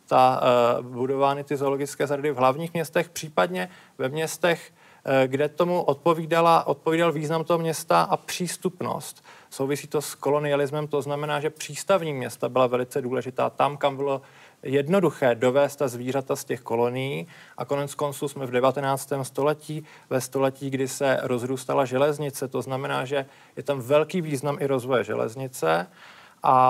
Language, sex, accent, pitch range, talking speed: Czech, male, native, 125-145 Hz, 150 wpm